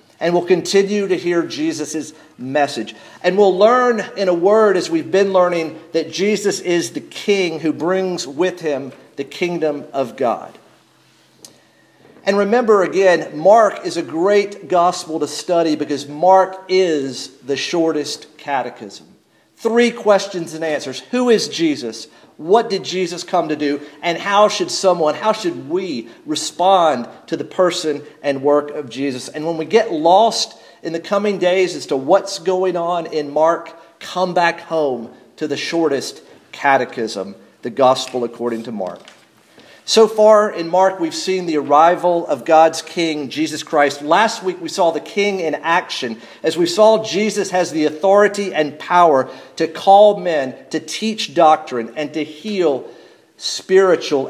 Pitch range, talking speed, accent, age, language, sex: 150-195 Hz, 155 wpm, American, 50-69, English, male